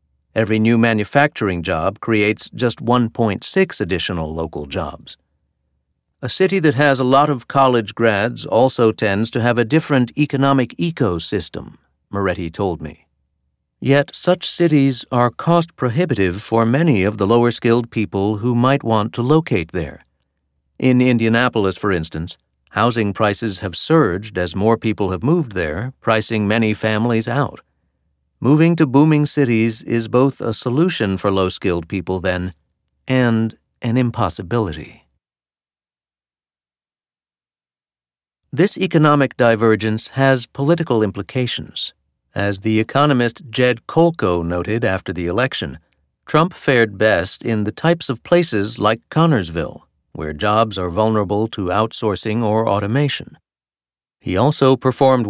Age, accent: 50-69, American